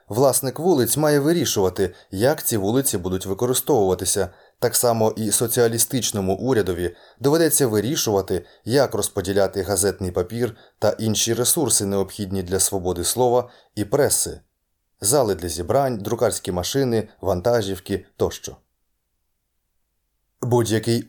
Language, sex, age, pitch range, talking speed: Ukrainian, male, 20-39, 95-120 Hz, 110 wpm